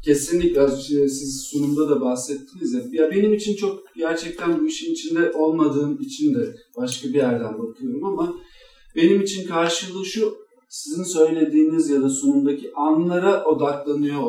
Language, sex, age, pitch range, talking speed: Turkish, male, 50-69, 140-200 Hz, 140 wpm